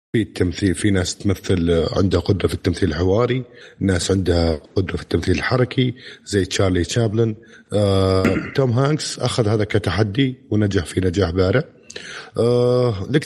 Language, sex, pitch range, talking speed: Arabic, male, 100-125 Hz, 130 wpm